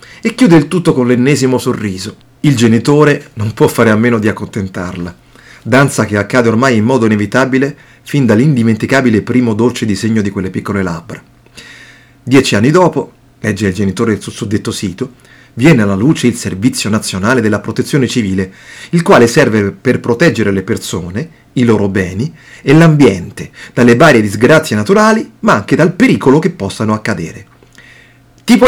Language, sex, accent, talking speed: Italian, male, native, 155 wpm